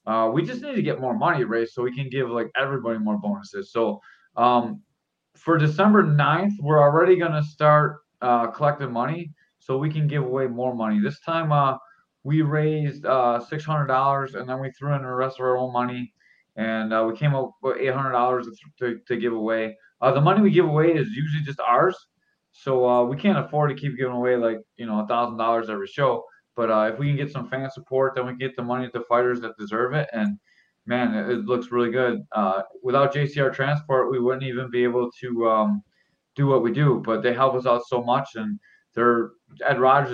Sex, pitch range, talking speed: male, 115-145 Hz, 210 wpm